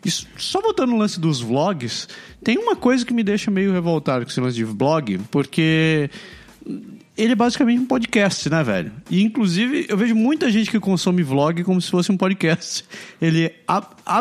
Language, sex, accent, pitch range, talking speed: Portuguese, male, Brazilian, 155-220 Hz, 185 wpm